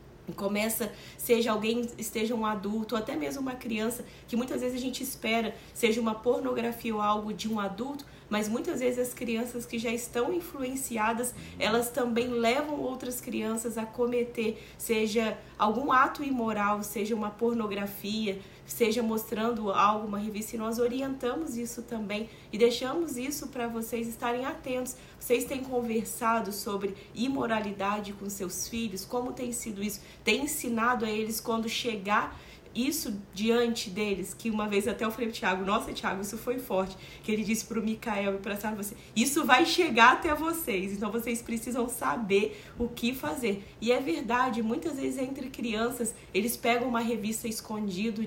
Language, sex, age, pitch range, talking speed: Portuguese, female, 20-39, 215-245 Hz, 160 wpm